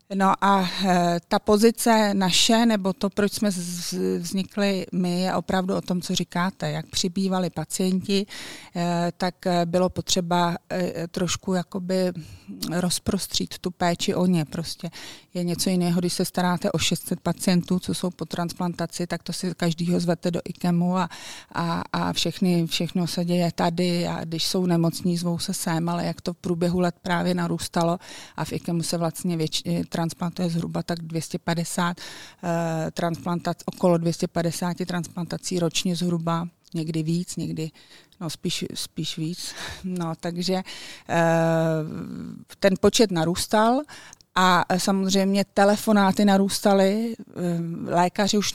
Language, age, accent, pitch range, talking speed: Czech, 40-59, native, 170-190 Hz, 135 wpm